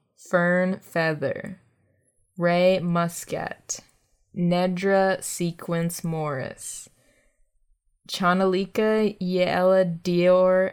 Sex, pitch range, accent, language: female, 165-195 Hz, American, English